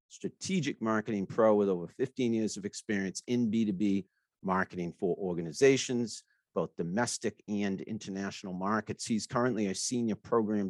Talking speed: 135 wpm